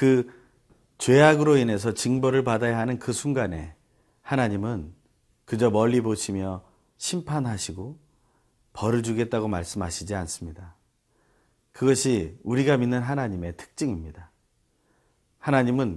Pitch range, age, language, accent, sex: 95-130 Hz, 40-59, Korean, native, male